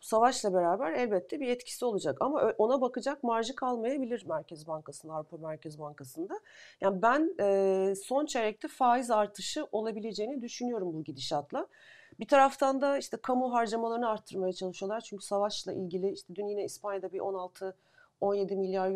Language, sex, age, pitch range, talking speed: Turkish, female, 40-59, 180-230 Hz, 140 wpm